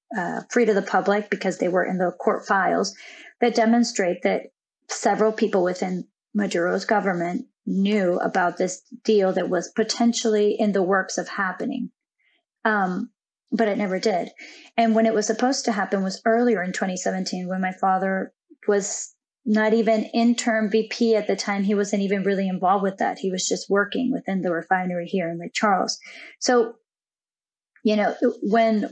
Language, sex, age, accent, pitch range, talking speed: English, female, 30-49, American, 190-225 Hz, 170 wpm